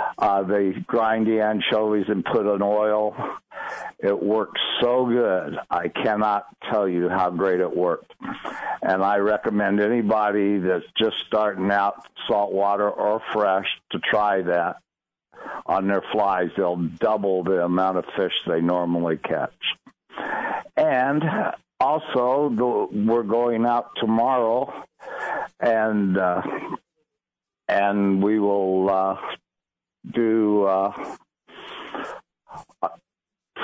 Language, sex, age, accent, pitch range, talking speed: English, male, 60-79, American, 95-115 Hz, 110 wpm